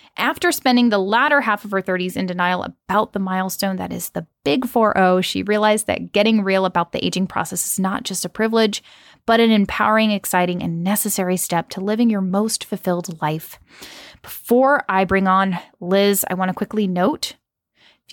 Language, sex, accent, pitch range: English, female, American, 190-245 Hz